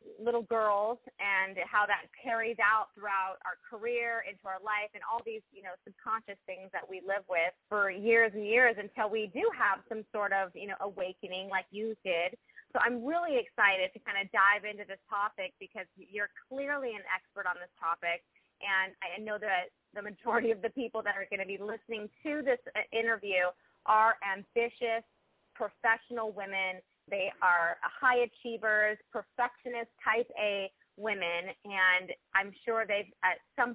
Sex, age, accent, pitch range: female, 20-39, American, 190-240 Hz